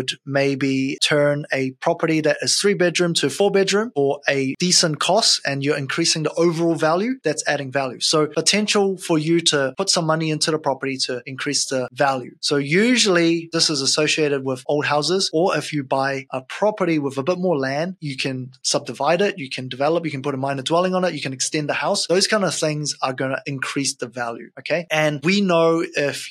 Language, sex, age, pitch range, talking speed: English, male, 20-39, 135-170 Hz, 210 wpm